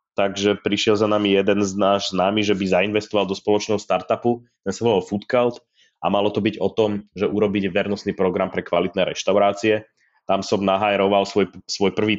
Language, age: Slovak, 20-39